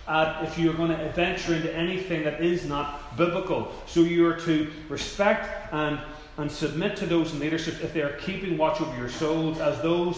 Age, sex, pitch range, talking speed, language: 30-49, male, 150-180 Hz, 200 wpm, English